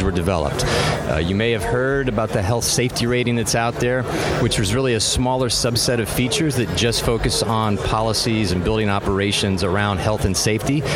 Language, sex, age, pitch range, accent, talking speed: English, male, 40-59, 105-125 Hz, American, 190 wpm